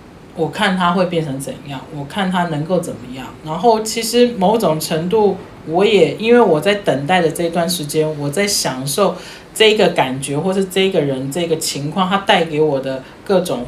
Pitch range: 155-200 Hz